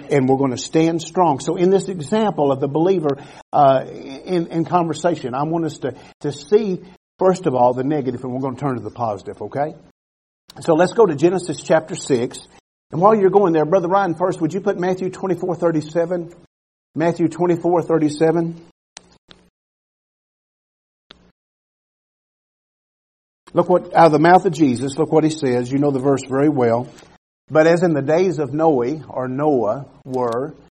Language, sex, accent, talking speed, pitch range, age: English, male, American, 175 wpm, 135-170 Hz, 50-69